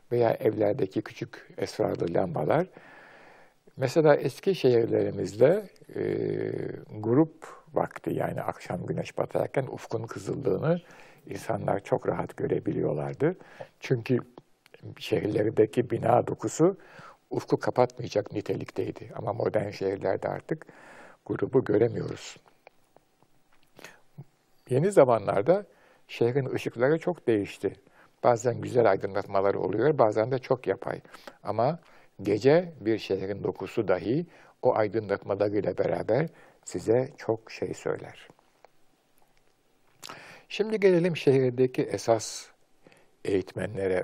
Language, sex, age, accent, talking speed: Turkish, male, 60-79, native, 90 wpm